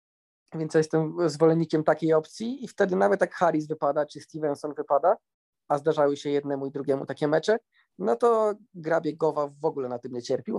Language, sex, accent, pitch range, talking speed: Polish, male, native, 140-170 Hz, 180 wpm